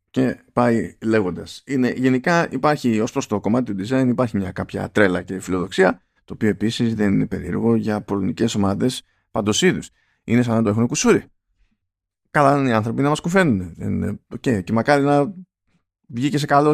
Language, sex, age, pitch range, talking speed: Greek, male, 20-39, 100-145 Hz, 170 wpm